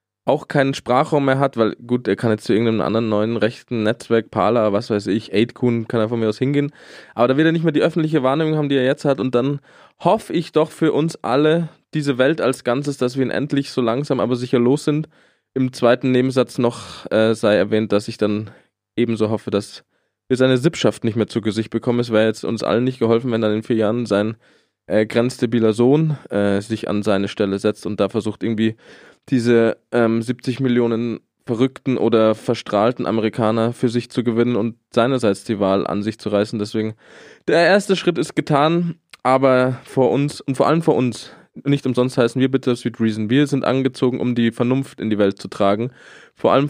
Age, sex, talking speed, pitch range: 20-39, male, 210 wpm, 110-135 Hz